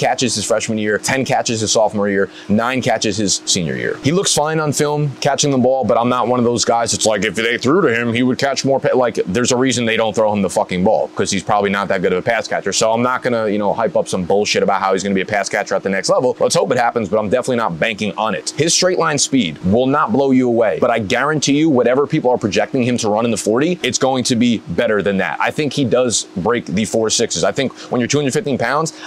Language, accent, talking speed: English, American, 285 wpm